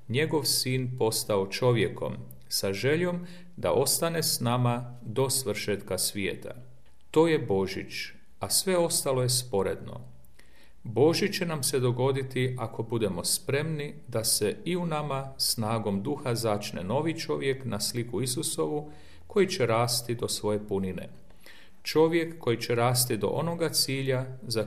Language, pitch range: Croatian, 105-145 Hz